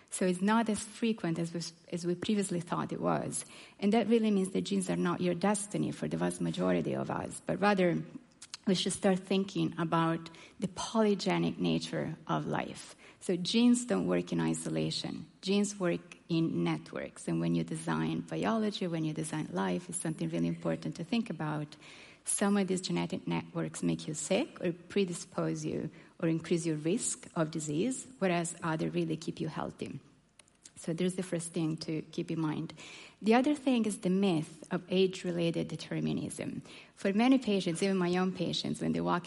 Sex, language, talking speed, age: female, English, 175 wpm, 30-49